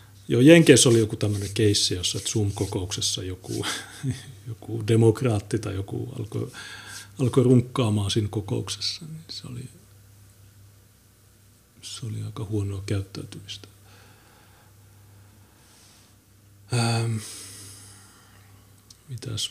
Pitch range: 100-115 Hz